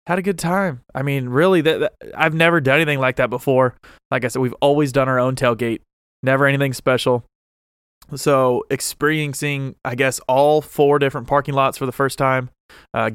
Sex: male